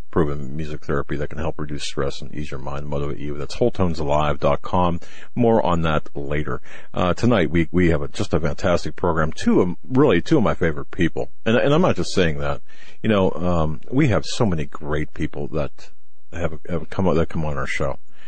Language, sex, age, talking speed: English, male, 50-69, 215 wpm